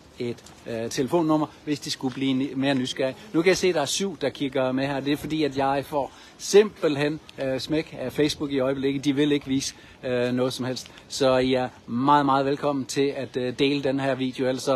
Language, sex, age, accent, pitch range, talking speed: Danish, male, 60-79, native, 115-145 Hz, 235 wpm